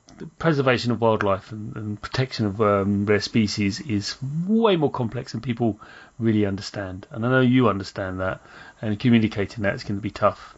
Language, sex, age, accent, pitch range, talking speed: English, male, 30-49, British, 110-150 Hz, 185 wpm